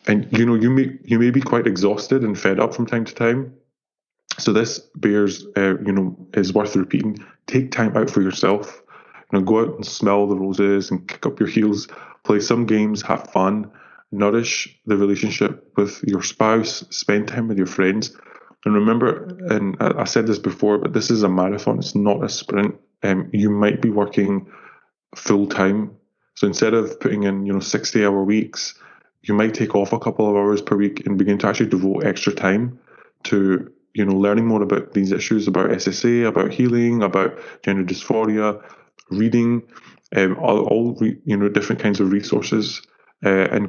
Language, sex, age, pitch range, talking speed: English, male, 20-39, 100-110 Hz, 190 wpm